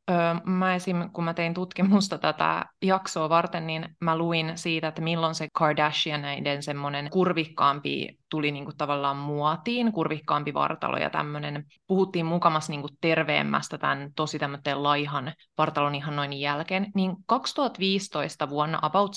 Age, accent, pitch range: 20-39, native, 150-180 Hz